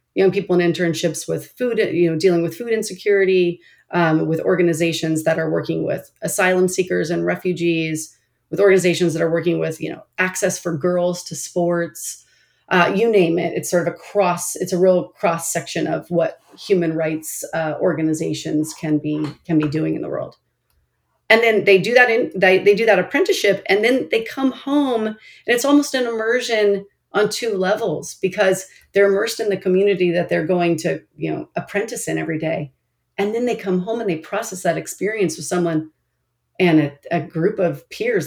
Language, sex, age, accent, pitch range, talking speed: English, female, 40-59, American, 165-200 Hz, 190 wpm